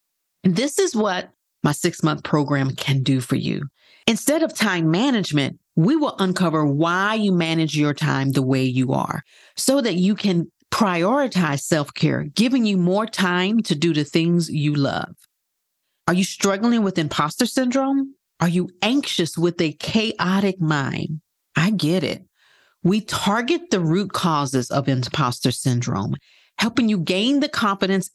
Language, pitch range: English, 155-215 Hz